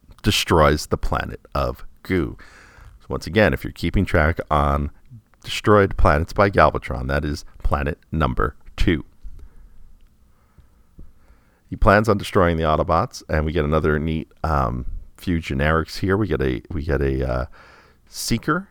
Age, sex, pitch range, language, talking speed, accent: 40-59, male, 70-95 Hz, English, 145 wpm, American